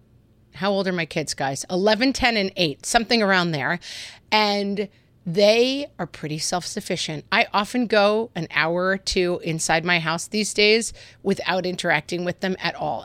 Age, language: 30-49, English